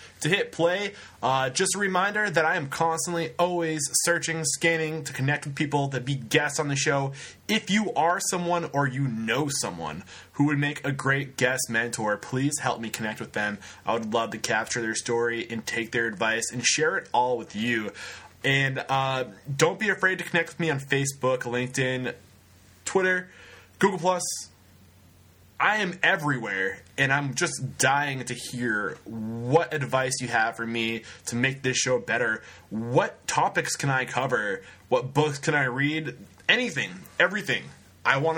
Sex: male